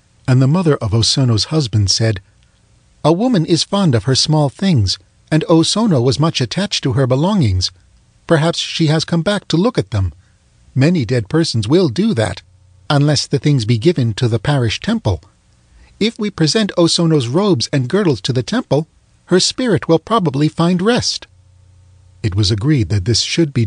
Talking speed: 175 wpm